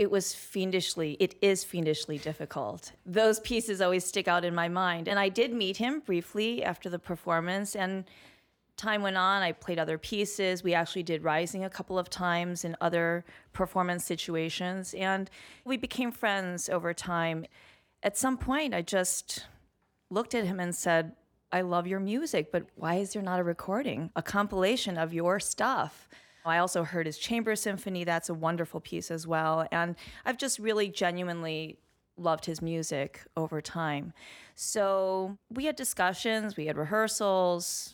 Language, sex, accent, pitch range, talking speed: English, female, American, 160-195 Hz, 165 wpm